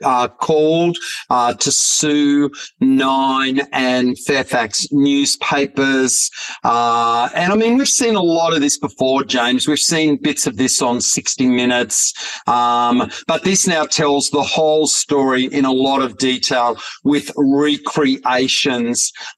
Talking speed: 135 wpm